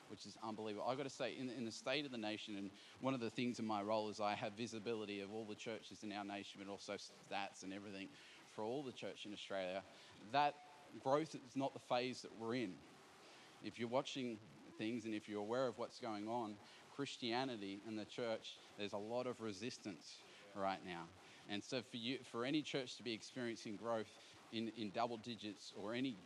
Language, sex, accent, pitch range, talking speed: English, male, Australian, 105-125 Hz, 215 wpm